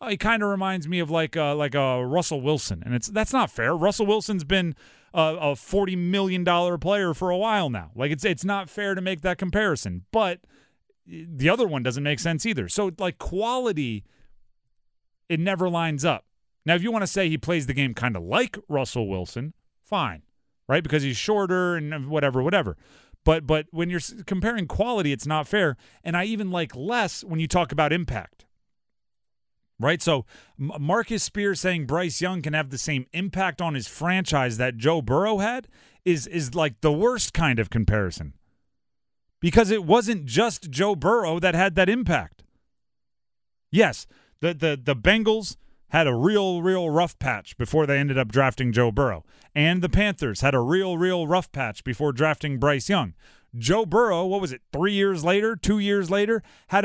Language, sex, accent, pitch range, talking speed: English, male, American, 140-195 Hz, 185 wpm